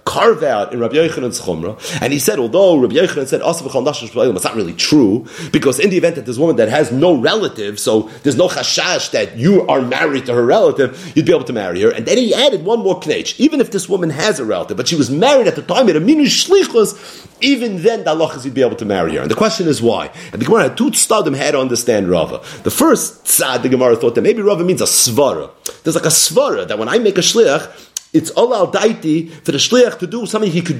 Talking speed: 235 wpm